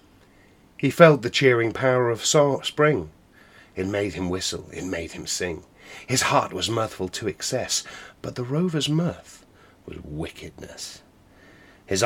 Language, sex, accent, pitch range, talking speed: English, male, British, 95-140 Hz, 140 wpm